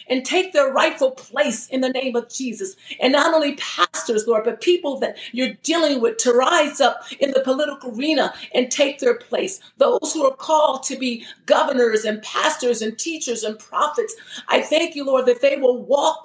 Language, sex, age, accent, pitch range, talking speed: English, female, 40-59, American, 240-300 Hz, 195 wpm